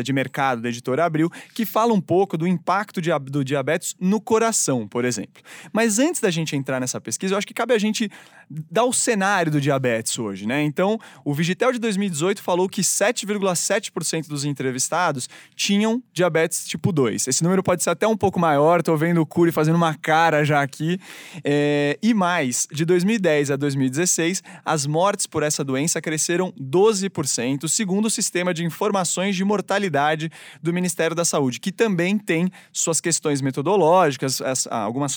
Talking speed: 170 wpm